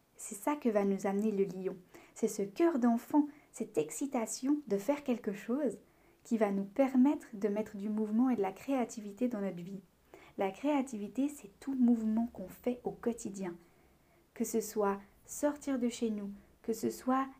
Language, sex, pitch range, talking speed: French, female, 205-265 Hz, 180 wpm